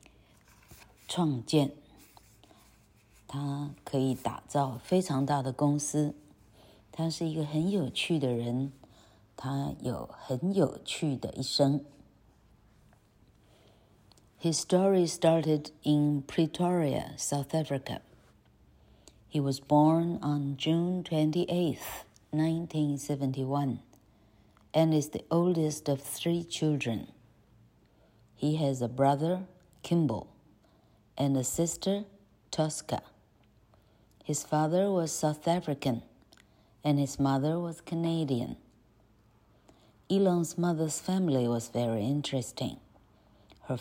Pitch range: 115-160 Hz